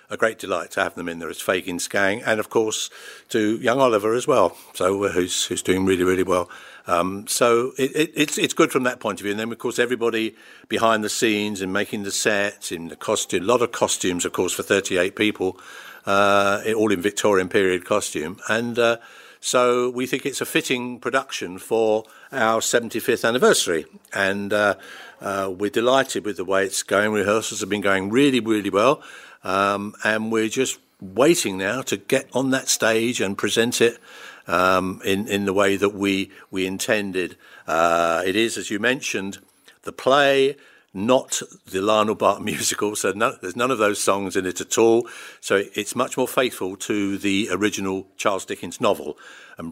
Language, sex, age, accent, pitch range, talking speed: English, male, 60-79, British, 95-115 Hz, 195 wpm